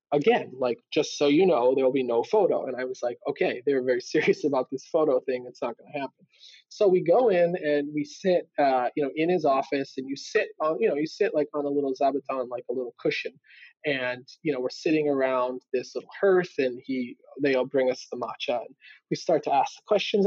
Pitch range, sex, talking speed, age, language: 135-205 Hz, male, 235 wpm, 20-39, English